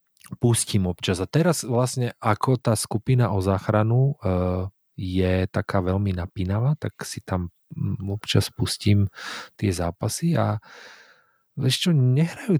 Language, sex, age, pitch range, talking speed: Slovak, male, 30-49, 95-120 Hz, 115 wpm